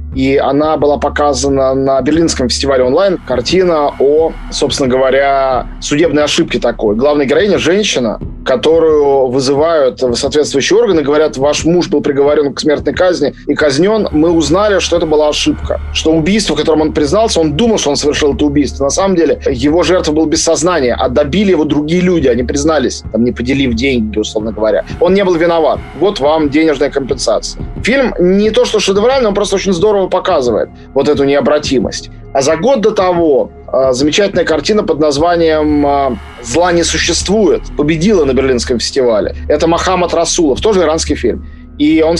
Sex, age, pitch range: male, 20-39, 140-175 Hz